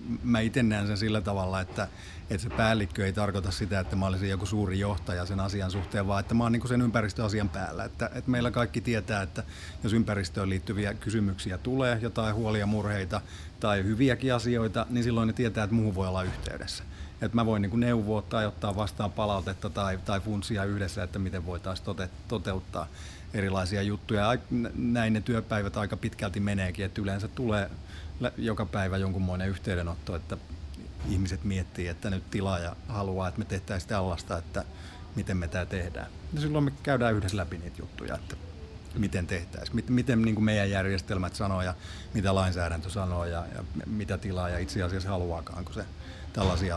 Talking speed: 175 wpm